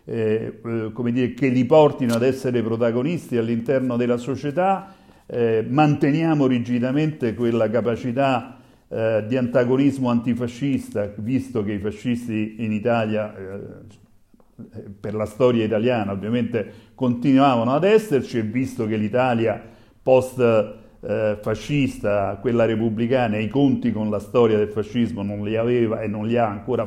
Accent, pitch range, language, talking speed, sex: native, 115-145 Hz, Italian, 130 wpm, male